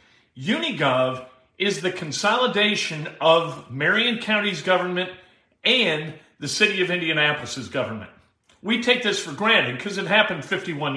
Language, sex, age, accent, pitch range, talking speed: English, male, 40-59, American, 145-195 Hz, 125 wpm